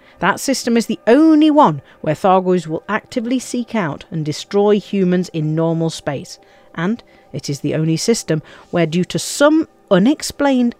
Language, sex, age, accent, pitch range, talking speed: English, female, 50-69, British, 155-230 Hz, 160 wpm